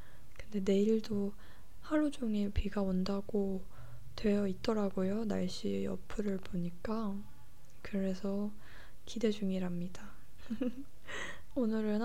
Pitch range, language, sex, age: 190-220 Hz, Korean, female, 20-39